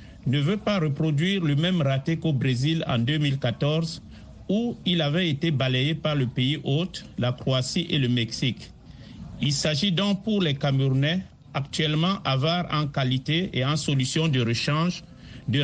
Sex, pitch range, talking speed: male, 135-175 Hz, 155 wpm